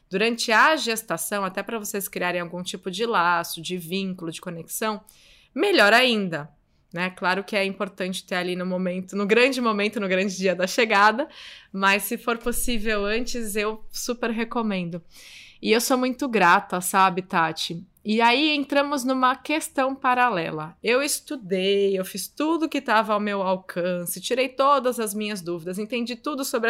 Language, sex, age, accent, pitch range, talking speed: Portuguese, female, 20-39, Brazilian, 190-240 Hz, 165 wpm